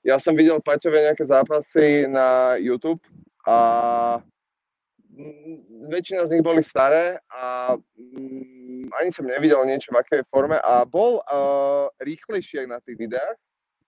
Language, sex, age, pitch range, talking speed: Czech, male, 20-39, 145-185 Hz, 130 wpm